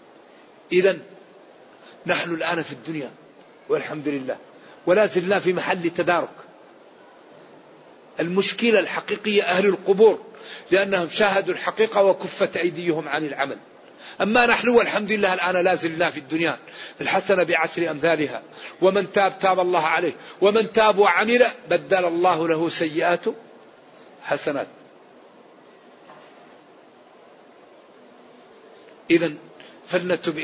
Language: Arabic